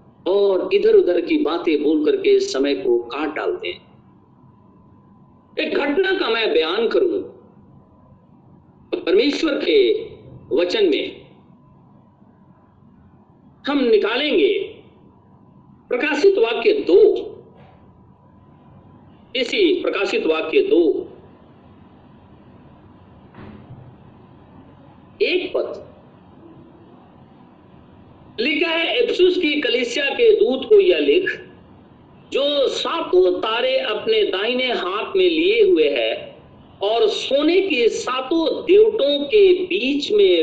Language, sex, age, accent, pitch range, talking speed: Hindi, male, 50-69, native, 335-430 Hz, 90 wpm